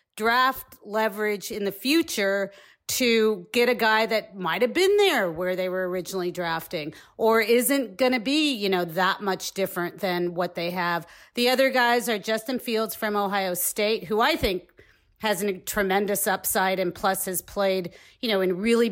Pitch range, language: 190-255 Hz, English